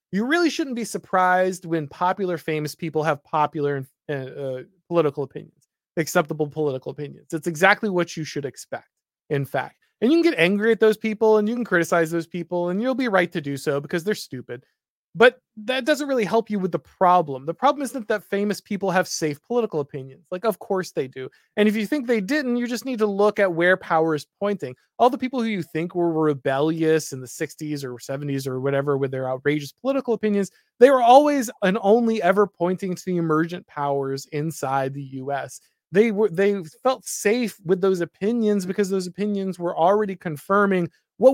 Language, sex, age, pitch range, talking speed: English, male, 20-39, 155-215 Hz, 200 wpm